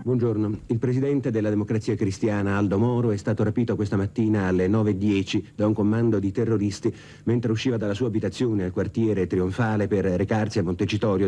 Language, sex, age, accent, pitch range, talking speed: Italian, male, 50-69, native, 105-145 Hz, 170 wpm